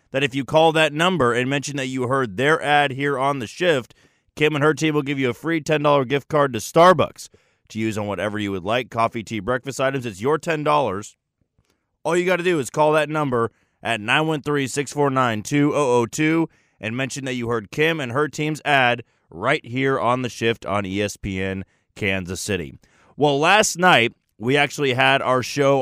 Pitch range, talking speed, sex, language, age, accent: 115-145 Hz, 195 wpm, male, English, 30-49, American